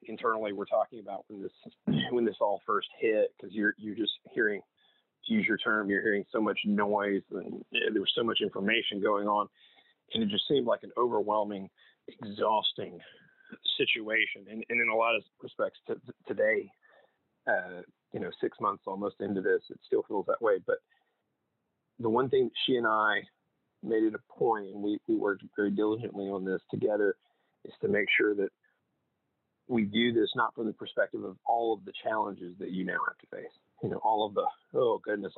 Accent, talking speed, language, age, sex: American, 195 wpm, English, 40-59, male